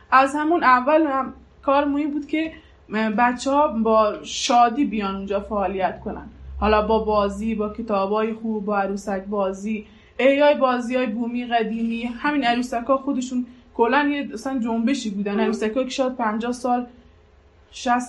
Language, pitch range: Persian, 215-250 Hz